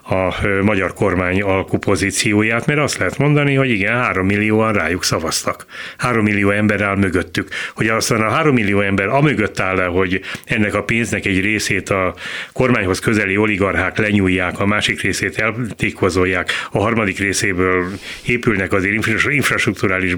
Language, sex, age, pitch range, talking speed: Hungarian, male, 30-49, 95-115 Hz, 145 wpm